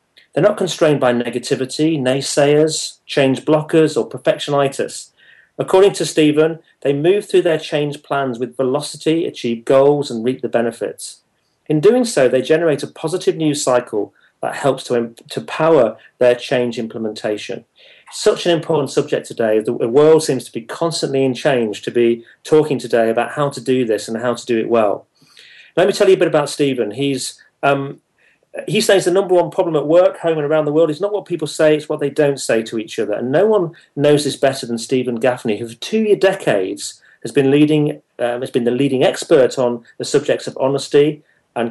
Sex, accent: male, British